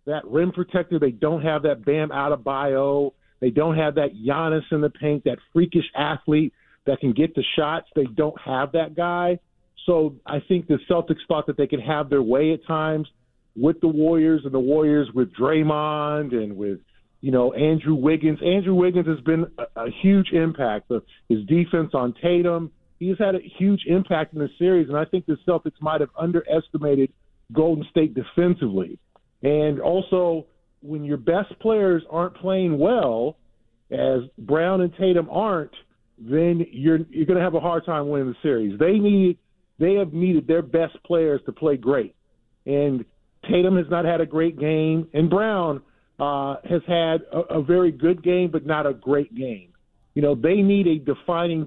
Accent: American